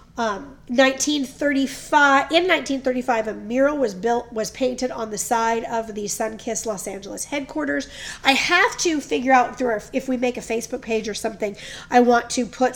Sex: female